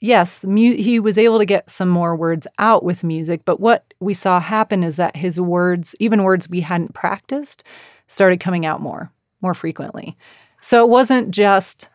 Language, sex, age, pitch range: English, female, 30-49, 170-200 Hz